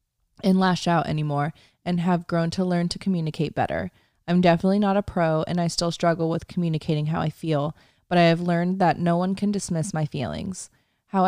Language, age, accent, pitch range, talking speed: English, 20-39, American, 150-175 Hz, 200 wpm